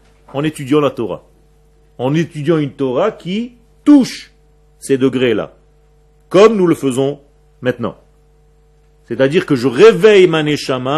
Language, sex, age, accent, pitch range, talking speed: French, male, 40-59, French, 135-180 Hz, 120 wpm